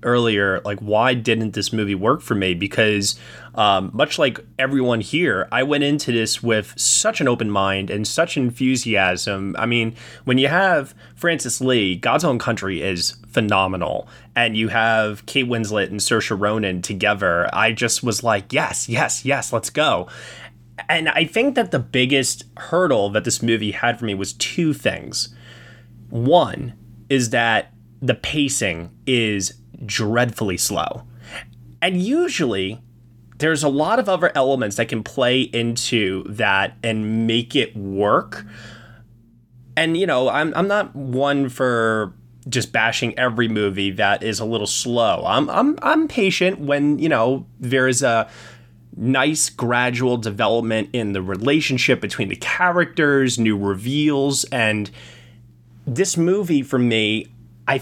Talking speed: 145 wpm